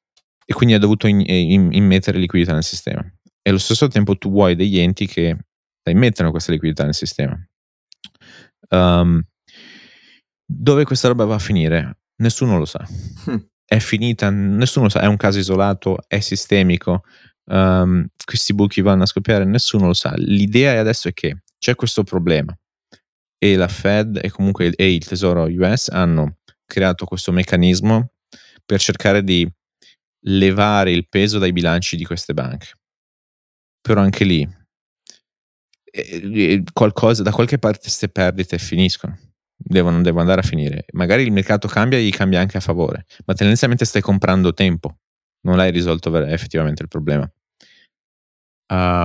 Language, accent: Italian, native